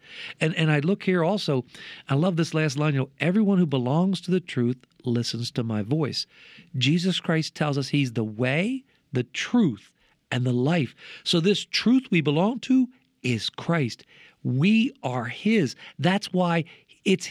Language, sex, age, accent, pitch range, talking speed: English, male, 50-69, American, 135-195 Hz, 170 wpm